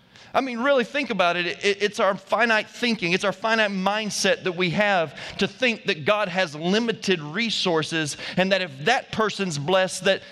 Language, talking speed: English, 180 wpm